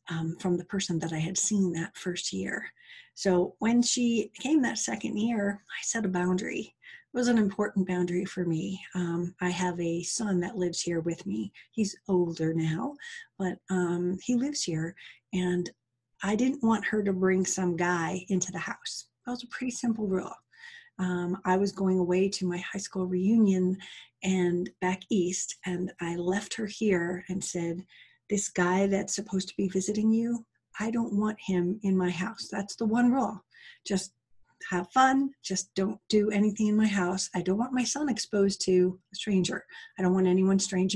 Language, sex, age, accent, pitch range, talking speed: English, female, 40-59, American, 175-215 Hz, 190 wpm